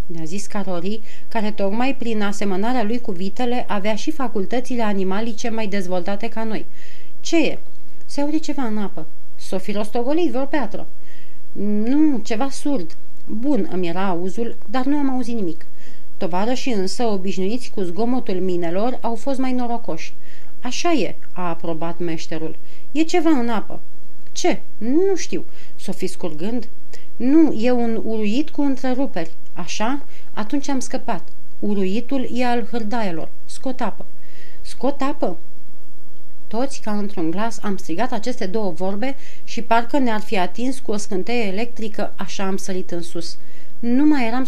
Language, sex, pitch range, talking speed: Romanian, female, 190-250 Hz, 150 wpm